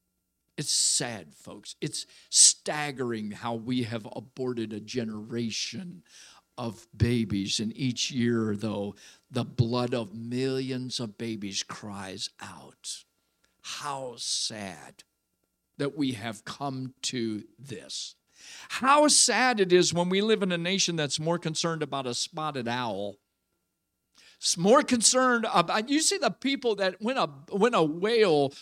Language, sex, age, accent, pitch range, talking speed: English, male, 50-69, American, 120-175 Hz, 135 wpm